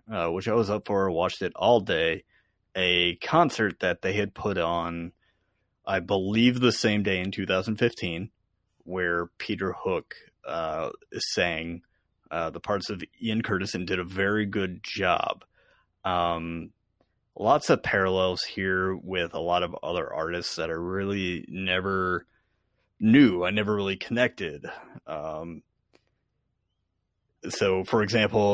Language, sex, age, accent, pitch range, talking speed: English, male, 30-49, American, 90-105 Hz, 135 wpm